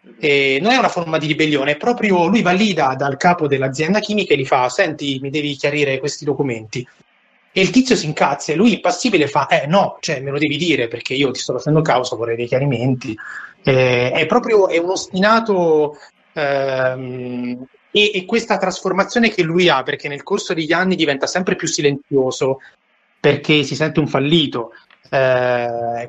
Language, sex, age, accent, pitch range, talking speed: Italian, male, 30-49, native, 135-175 Hz, 180 wpm